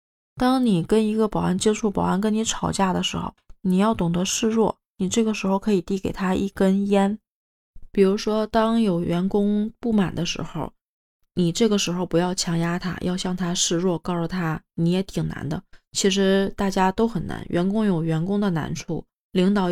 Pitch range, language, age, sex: 180-210 Hz, Chinese, 20-39, female